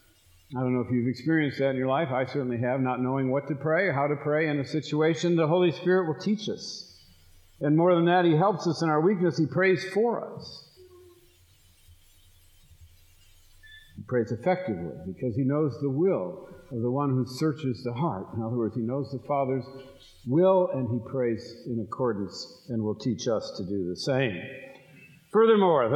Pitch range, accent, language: 125-170 Hz, American, English